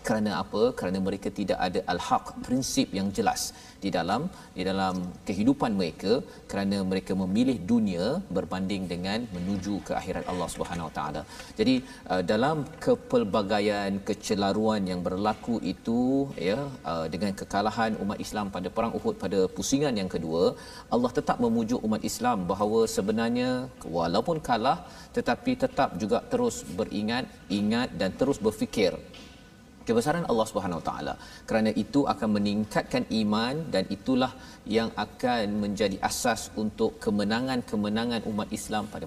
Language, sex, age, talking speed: Malayalam, male, 40-59, 135 wpm